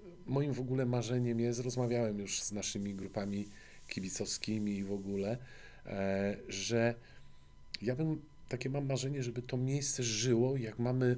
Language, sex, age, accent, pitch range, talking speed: Polish, male, 40-59, native, 105-135 Hz, 140 wpm